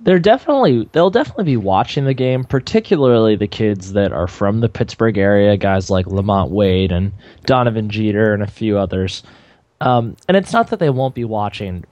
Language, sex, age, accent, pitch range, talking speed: English, male, 20-39, American, 105-145 Hz, 185 wpm